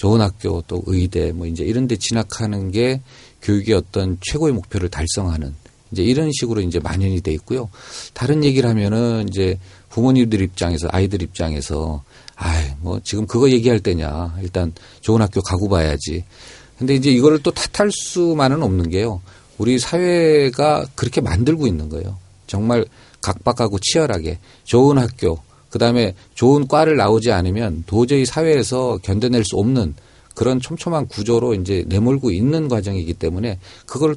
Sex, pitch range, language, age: male, 95-130 Hz, Korean, 40-59